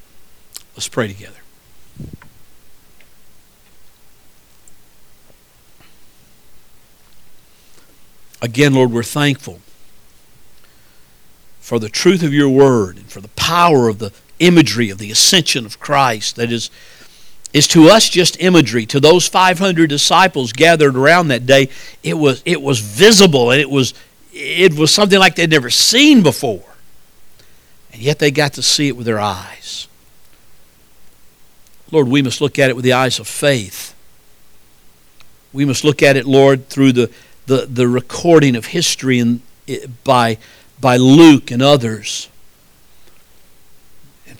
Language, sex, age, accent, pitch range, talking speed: English, male, 60-79, American, 105-145 Hz, 130 wpm